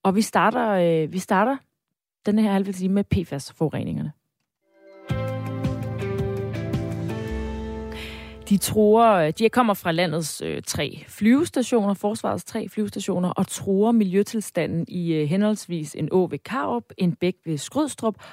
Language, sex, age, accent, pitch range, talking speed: Danish, female, 30-49, native, 160-215 Hz, 110 wpm